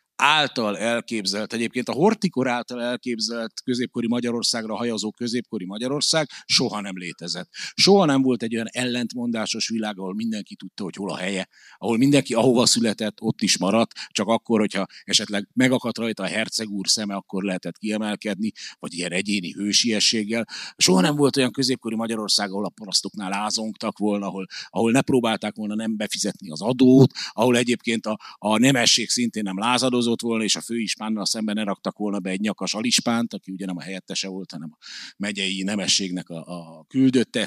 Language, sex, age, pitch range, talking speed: Hungarian, male, 60-79, 100-125 Hz, 170 wpm